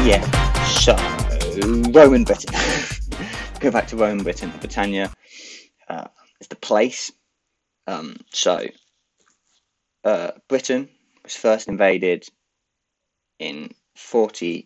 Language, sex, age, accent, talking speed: English, male, 20-39, British, 95 wpm